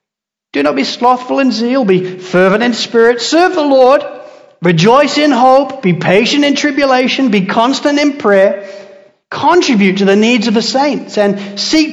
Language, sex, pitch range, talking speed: English, male, 175-230 Hz, 165 wpm